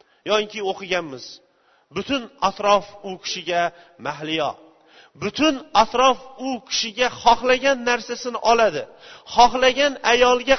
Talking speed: 95 wpm